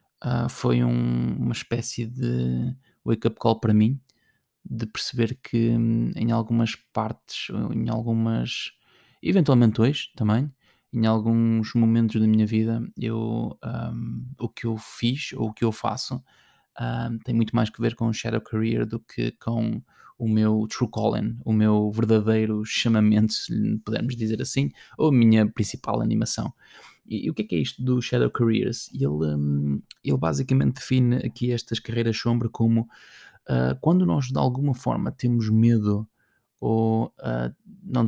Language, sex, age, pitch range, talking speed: Portuguese, male, 20-39, 110-120 Hz, 155 wpm